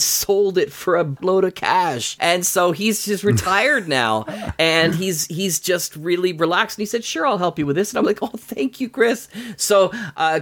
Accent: American